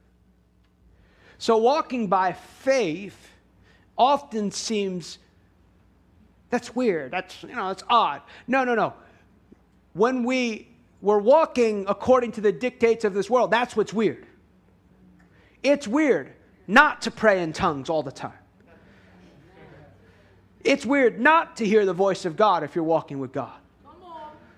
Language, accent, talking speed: English, American, 130 wpm